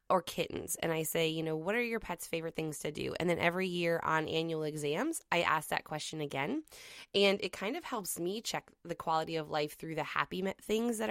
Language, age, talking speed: English, 20-39, 230 wpm